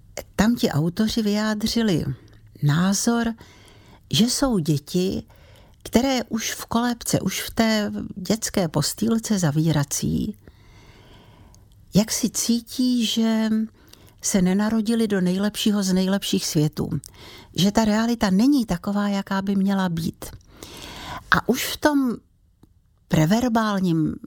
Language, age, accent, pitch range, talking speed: Czech, 60-79, native, 155-220 Hz, 105 wpm